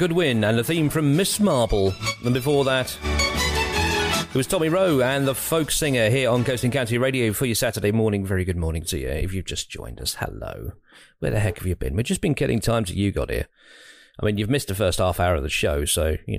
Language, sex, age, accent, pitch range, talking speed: English, male, 40-59, British, 95-140 Hz, 245 wpm